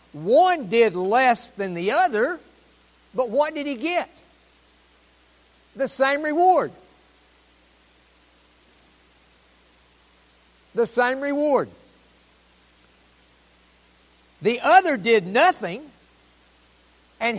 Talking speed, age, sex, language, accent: 75 wpm, 60-79, male, English, American